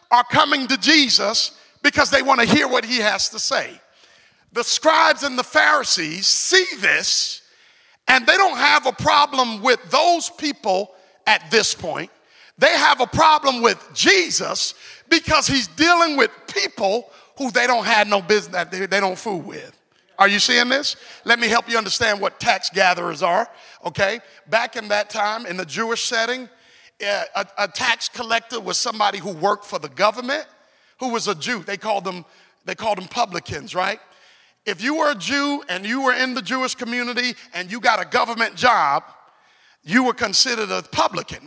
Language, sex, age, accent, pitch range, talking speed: English, male, 50-69, American, 210-290 Hz, 175 wpm